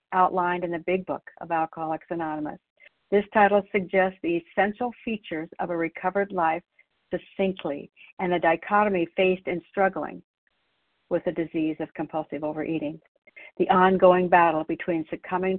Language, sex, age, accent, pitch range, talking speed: English, female, 60-79, American, 165-195 Hz, 140 wpm